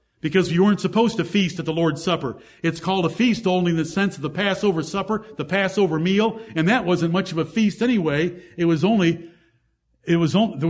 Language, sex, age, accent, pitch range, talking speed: English, male, 50-69, American, 165-225 Hz, 210 wpm